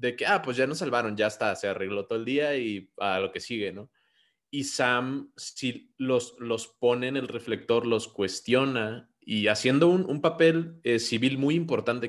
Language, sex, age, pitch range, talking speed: Spanish, male, 20-39, 105-125 Hz, 205 wpm